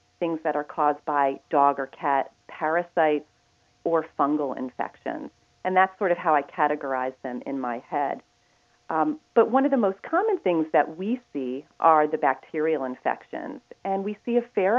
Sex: female